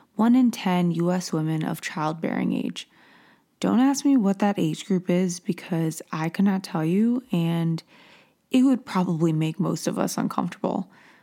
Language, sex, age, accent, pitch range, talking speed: English, female, 20-39, American, 165-210 Hz, 160 wpm